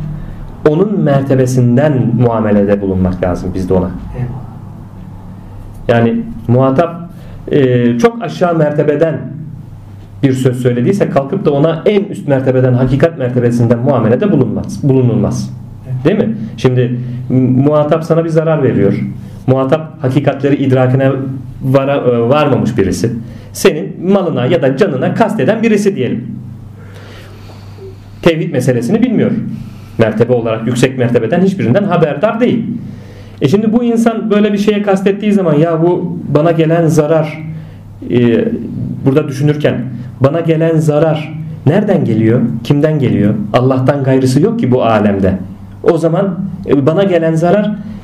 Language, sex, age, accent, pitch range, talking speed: Turkish, male, 40-59, native, 115-165 Hz, 115 wpm